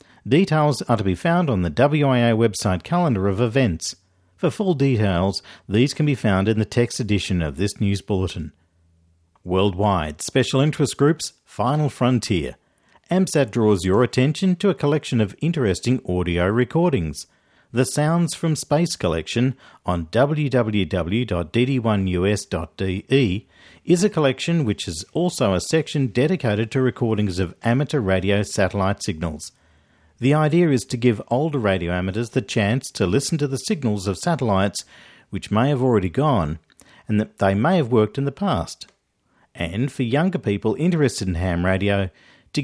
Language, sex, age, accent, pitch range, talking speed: English, male, 50-69, Australian, 95-140 Hz, 150 wpm